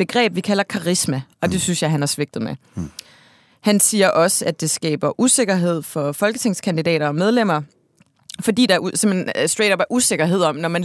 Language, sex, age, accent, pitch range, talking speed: Danish, female, 30-49, native, 155-200 Hz, 185 wpm